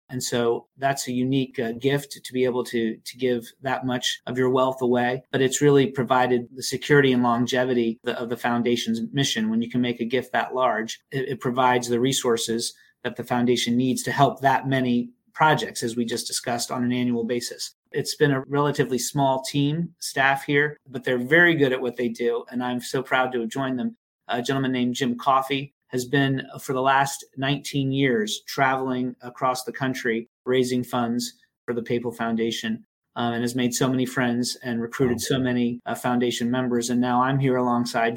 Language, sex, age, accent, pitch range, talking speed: English, male, 30-49, American, 120-140 Hz, 200 wpm